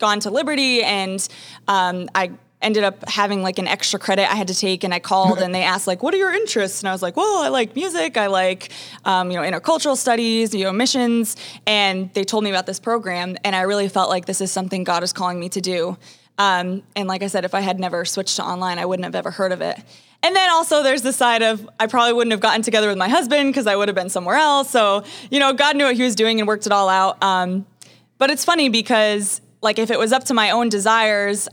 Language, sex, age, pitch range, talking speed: English, female, 20-39, 190-235 Hz, 260 wpm